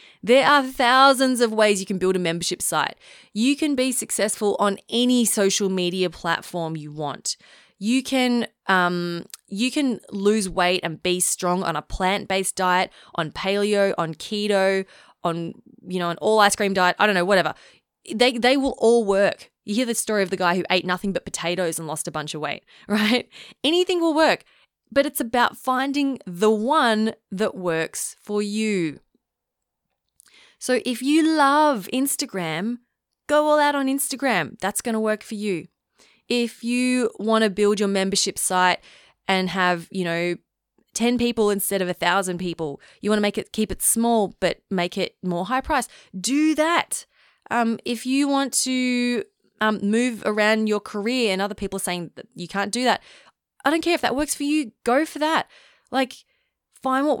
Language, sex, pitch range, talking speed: English, female, 185-250 Hz, 180 wpm